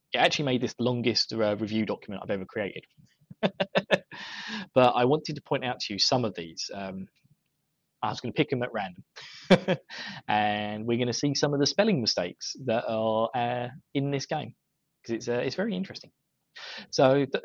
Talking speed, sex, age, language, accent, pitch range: 195 wpm, male, 20-39, English, British, 110-150 Hz